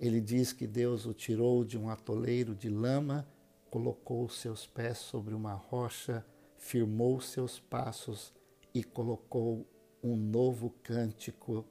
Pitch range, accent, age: 110-125 Hz, Brazilian, 50-69